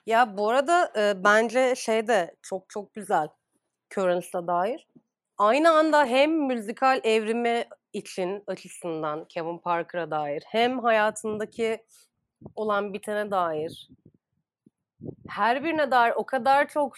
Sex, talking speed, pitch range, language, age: female, 115 wpm, 205-260 Hz, Turkish, 30-49